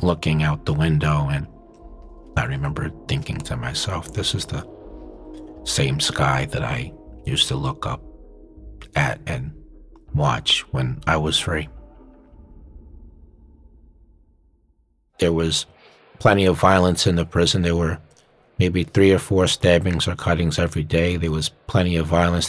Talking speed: 140 wpm